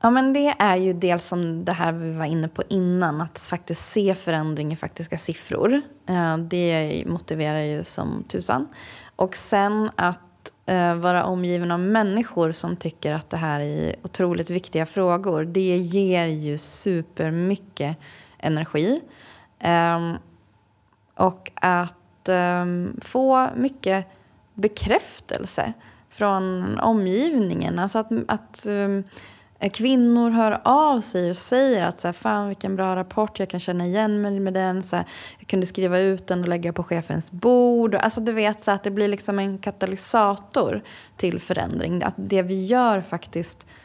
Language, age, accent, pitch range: Swedish, 20-39, native, 170-205 Hz